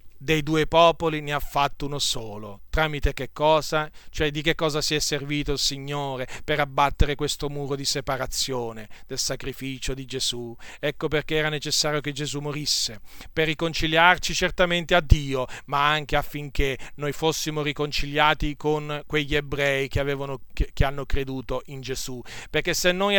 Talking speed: 160 wpm